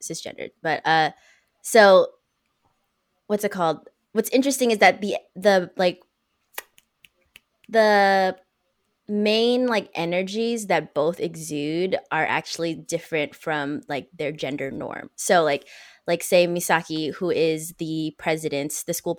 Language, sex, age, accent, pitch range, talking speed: English, female, 20-39, American, 160-195 Hz, 125 wpm